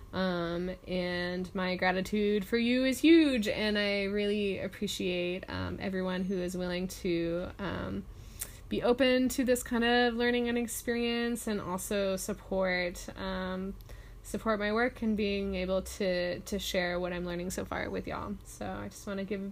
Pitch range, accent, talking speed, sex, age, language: 190-235 Hz, American, 170 wpm, female, 20-39, English